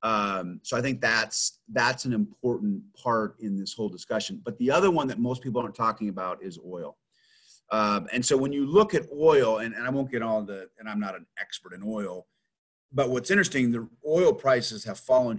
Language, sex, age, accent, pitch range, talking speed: English, male, 30-49, American, 100-125 Hz, 215 wpm